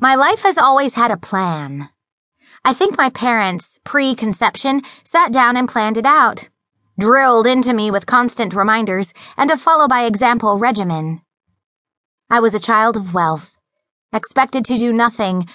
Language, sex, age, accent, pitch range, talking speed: English, female, 20-39, American, 185-255 Hz, 145 wpm